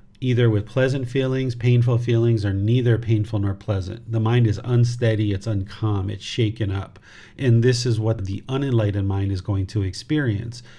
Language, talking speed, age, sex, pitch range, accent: English, 170 wpm, 40-59, male, 105-125 Hz, American